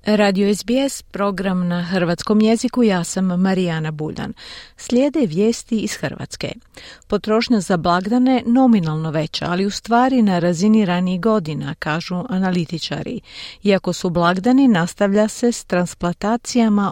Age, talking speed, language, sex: 50-69, 125 wpm, Croatian, female